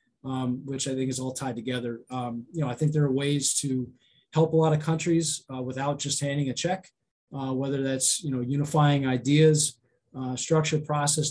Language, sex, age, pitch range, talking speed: English, male, 20-39, 130-155 Hz, 200 wpm